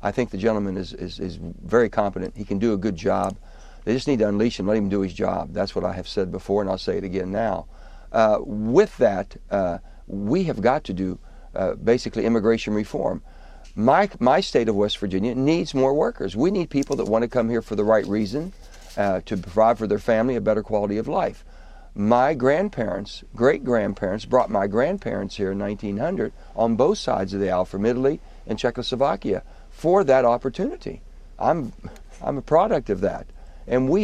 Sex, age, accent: male, 60-79, American